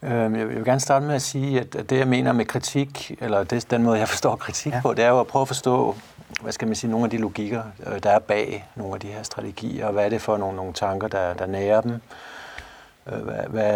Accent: native